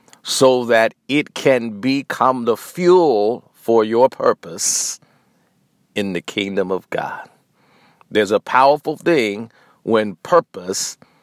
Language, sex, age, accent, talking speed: English, male, 50-69, American, 110 wpm